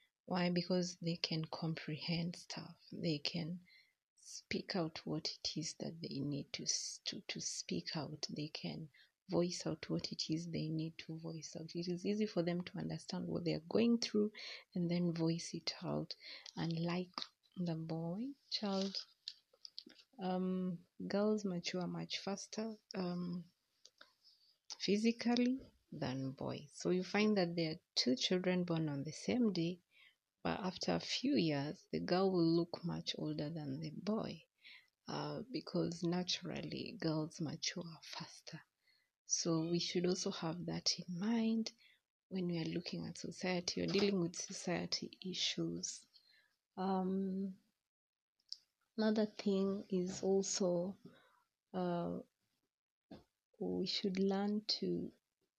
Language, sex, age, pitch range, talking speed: English, female, 30-49, 165-195 Hz, 135 wpm